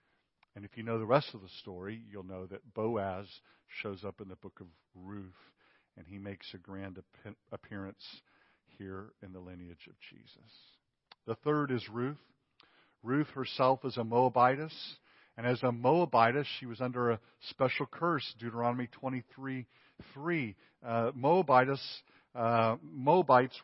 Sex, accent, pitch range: male, American, 110-140 Hz